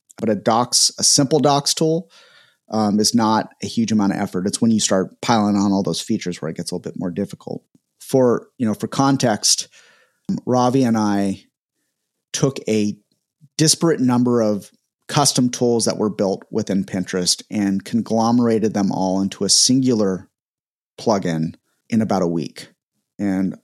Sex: male